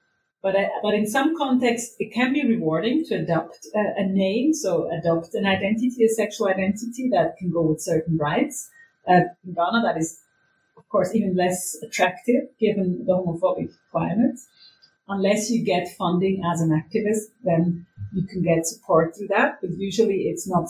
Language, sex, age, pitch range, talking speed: English, female, 40-59, 170-200 Hz, 170 wpm